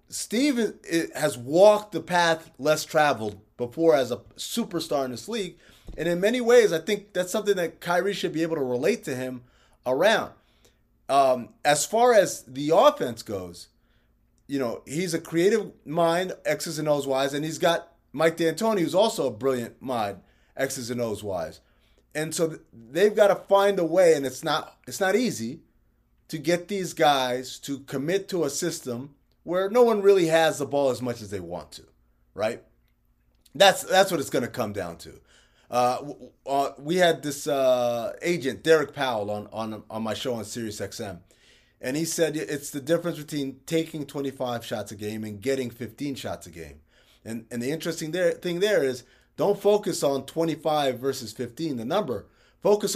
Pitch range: 125-175 Hz